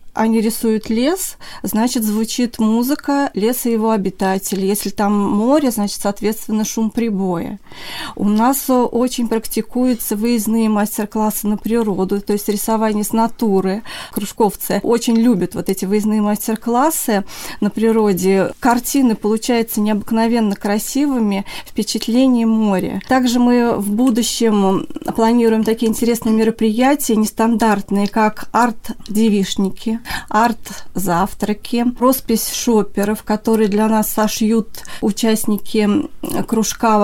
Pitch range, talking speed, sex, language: 210-230 Hz, 105 wpm, female, Russian